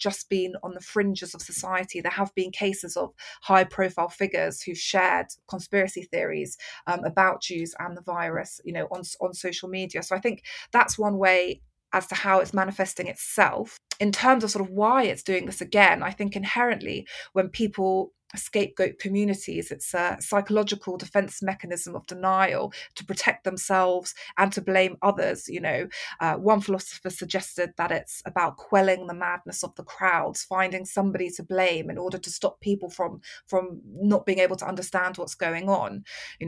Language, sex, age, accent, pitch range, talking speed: English, female, 20-39, British, 180-200 Hz, 180 wpm